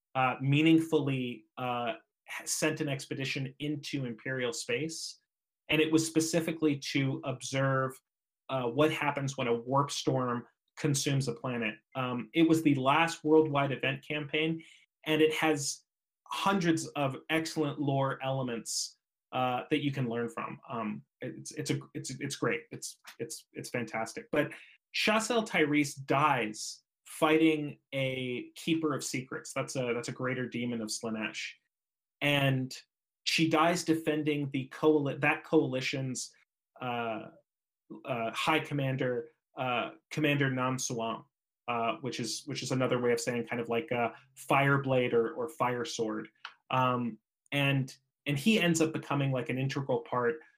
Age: 30-49